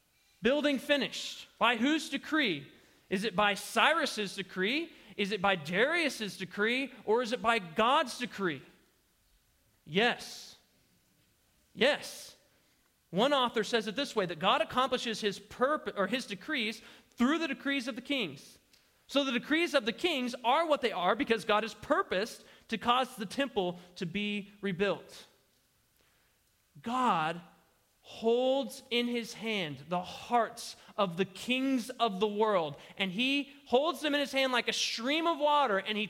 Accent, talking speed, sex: American, 150 wpm, male